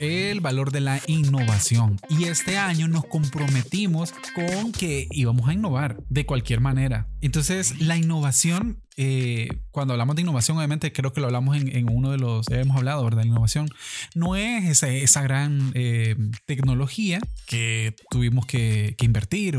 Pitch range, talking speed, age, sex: 125-155 Hz, 165 wpm, 20-39, male